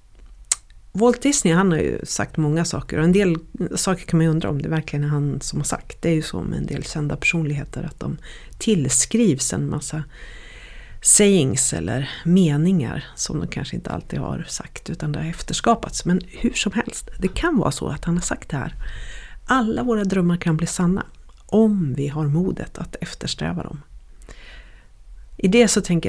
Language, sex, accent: Swedish, female, native